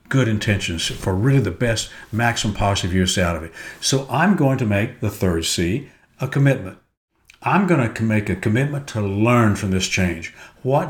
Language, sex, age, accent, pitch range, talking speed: English, male, 60-79, American, 95-130 Hz, 185 wpm